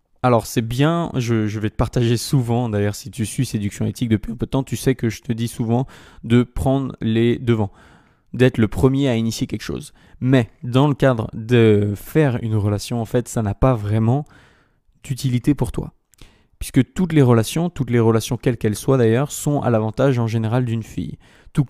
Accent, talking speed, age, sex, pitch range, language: French, 205 wpm, 20-39, male, 115-135 Hz, French